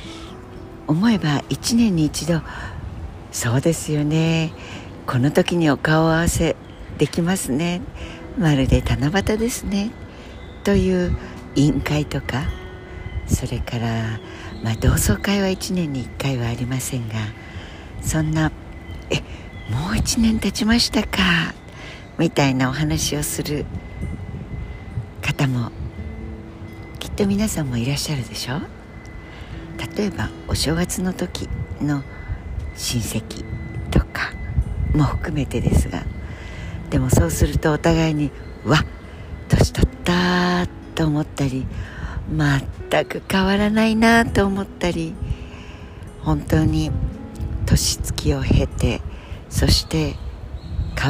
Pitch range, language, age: 100-160 Hz, Japanese, 60-79